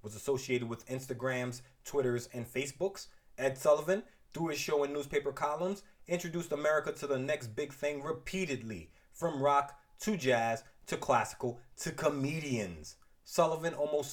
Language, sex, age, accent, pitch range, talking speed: English, male, 30-49, American, 125-175 Hz, 140 wpm